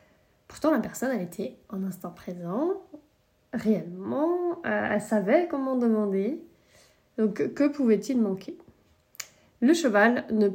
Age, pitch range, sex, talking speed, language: 20-39, 215-275 Hz, female, 115 wpm, French